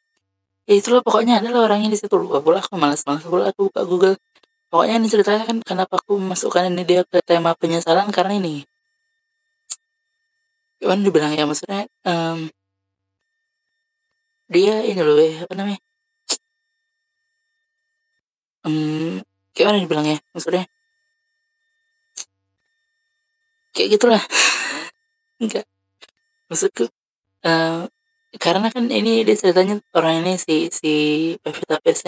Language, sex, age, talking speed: Indonesian, female, 20-39, 115 wpm